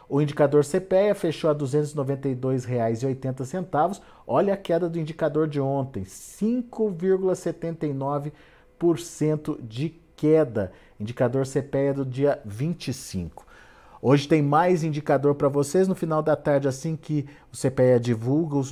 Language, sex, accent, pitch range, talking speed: Portuguese, male, Brazilian, 125-160 Hz, 125 wpm